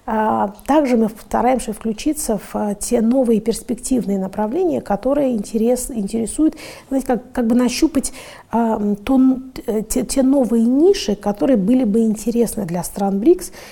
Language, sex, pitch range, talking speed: Russian, female, 200-240 Hz, 125 wpm